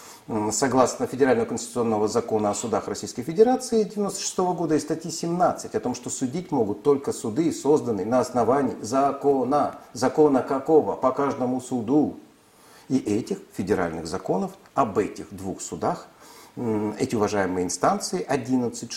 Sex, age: male, 50-69